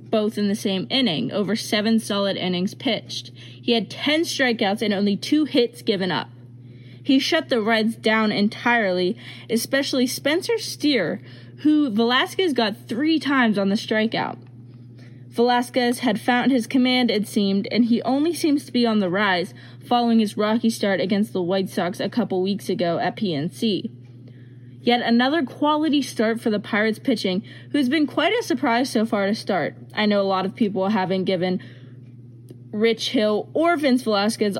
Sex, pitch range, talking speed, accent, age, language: female, 185-250 Hz, 170 wpm, American, 20-39, English